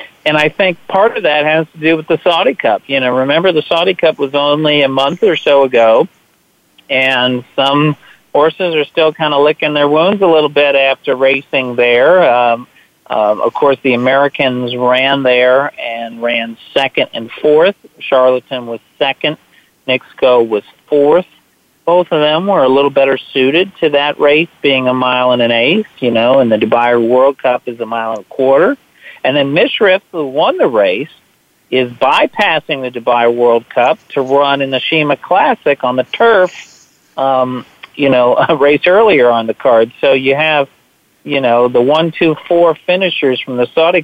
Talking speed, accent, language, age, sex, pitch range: 185 wpm, American, English, 50-69, male, 125-150 Hz